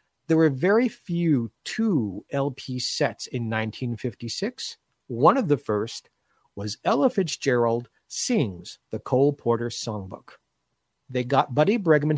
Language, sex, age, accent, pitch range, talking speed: English, male, 50-69, American, 120-160 Hz, 125 wpm